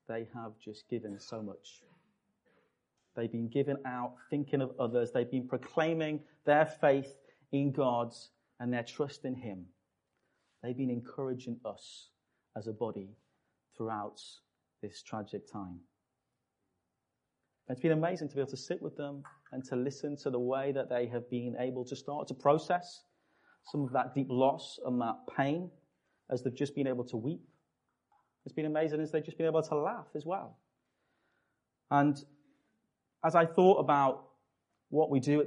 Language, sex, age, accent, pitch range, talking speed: English, male, 30-49, British, 120-145 Hz, 165 wpm